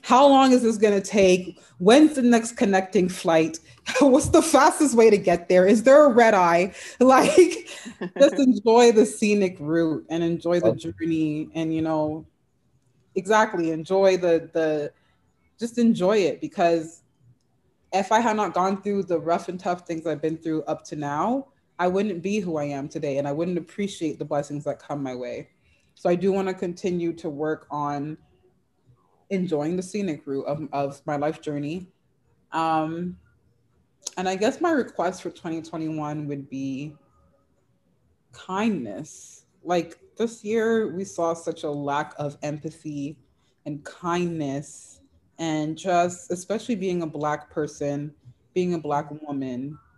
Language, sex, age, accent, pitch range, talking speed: English, female, 20-39, American, 150-195 Hz, 155 wpm